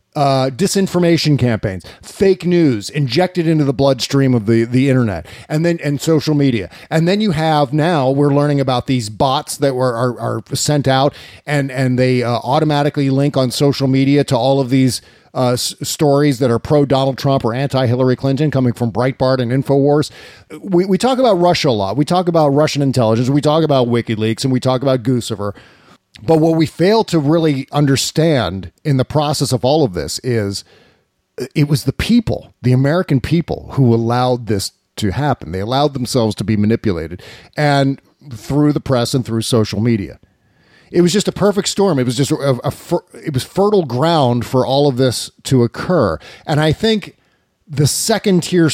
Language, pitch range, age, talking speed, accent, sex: English, 125-155 Hz, 40-59, 190 wpm, American, male